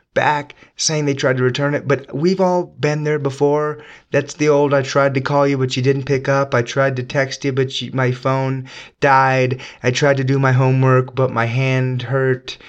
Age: 30-49